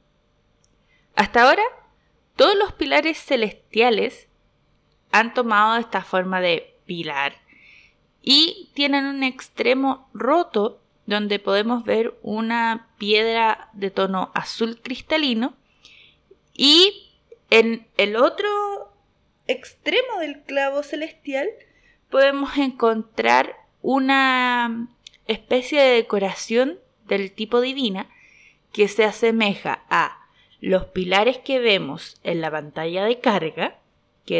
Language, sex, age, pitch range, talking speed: Spanish, female, 20-39, 200-285 Hz, 100 wpm